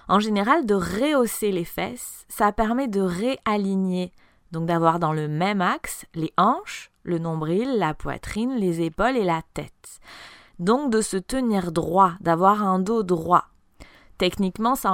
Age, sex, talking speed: 20-39, female, 155 wpm